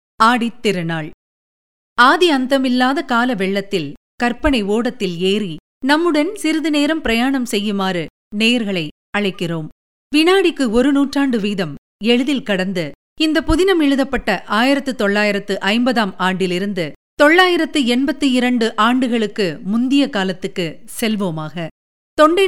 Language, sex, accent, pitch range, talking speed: Tamil, female, native, 195-280 Hz, 85 wpm